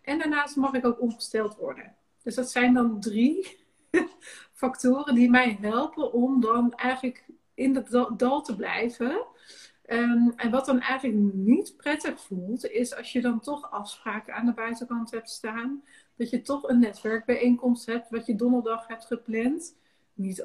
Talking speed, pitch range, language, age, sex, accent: 160 wpm, 225-260 Hz, Dutch, 40-59, female, Dutch